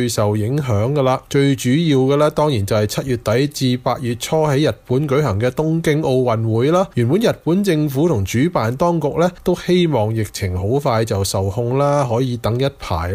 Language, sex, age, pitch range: Chinese, male, 20-39, 110-155 Hz